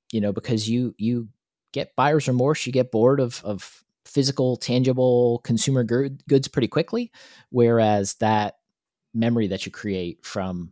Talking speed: 145 wpm